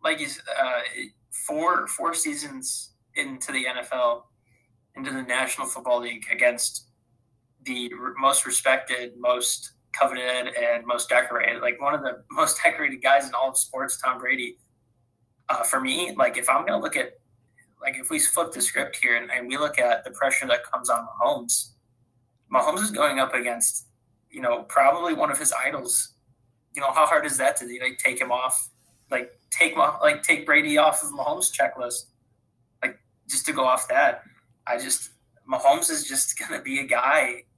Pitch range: 120-135 Hz